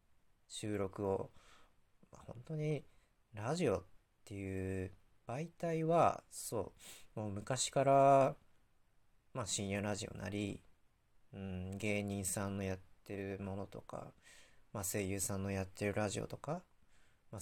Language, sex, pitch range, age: Japanese, male, 95-135 Hz, 40-59